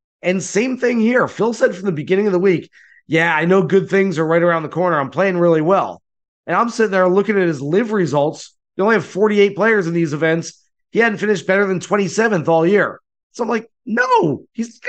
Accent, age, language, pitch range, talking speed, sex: American, 30-49, English, 155-190 Hz, 230 wpm, male